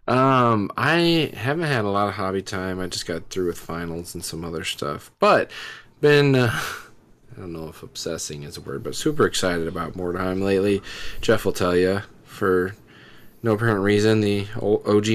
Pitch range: 90-110 Hz